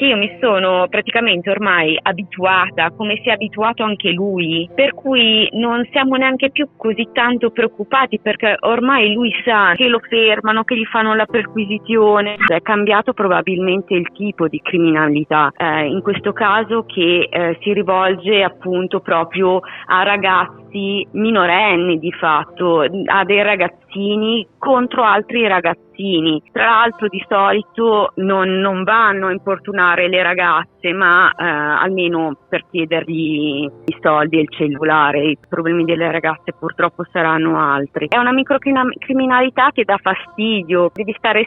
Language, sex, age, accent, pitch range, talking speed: Italian, female, 30-49, native, 165-215 Hz, 140 wpm